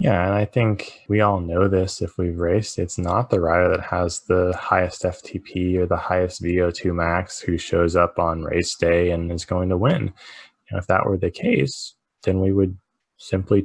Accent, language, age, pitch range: American, English, 20-39, 85-100 Hz